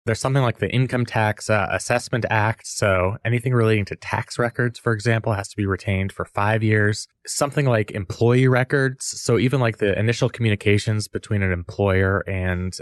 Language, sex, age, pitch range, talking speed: English, male, 20-39, 95-115 Hz, 180 wpm